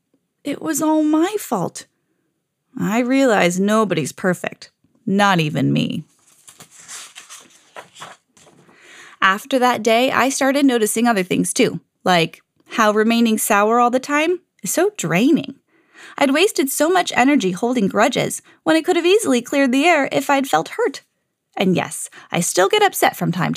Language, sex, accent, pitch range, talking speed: English, female, American, 235-345 Hz, 150 wpm